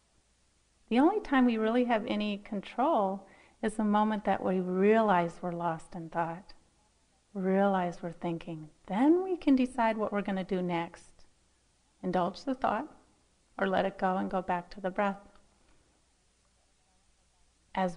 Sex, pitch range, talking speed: female, 170-205 Hz, 150 wpm